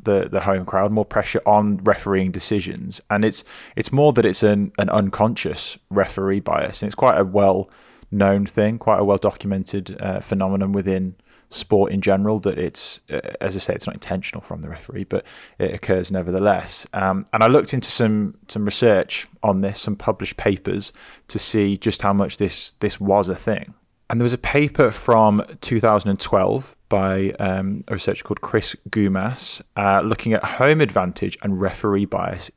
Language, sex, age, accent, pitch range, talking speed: English, male, 20-39, British, 95-110 Hz, 175 wpm